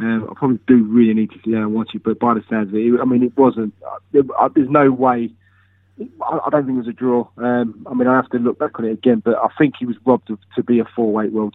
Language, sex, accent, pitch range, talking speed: English, male, British, 110-130 Hz, 300 wpm